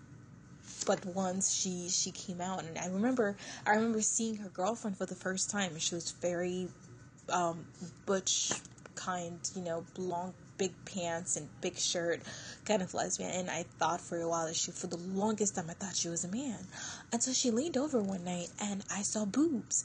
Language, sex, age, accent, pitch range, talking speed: English, female, 20-39, American, 165-215 Hz, 195 wpm